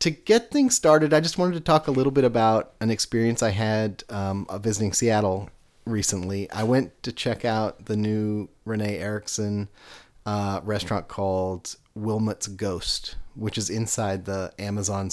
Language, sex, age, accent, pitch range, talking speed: English, male, 30-49, American, 105-135 Hz, 160 wpm